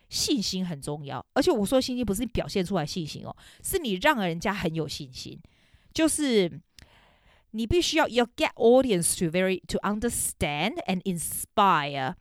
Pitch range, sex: 170-230 Hz, female